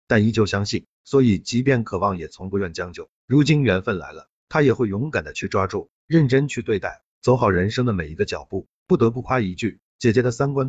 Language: Chinese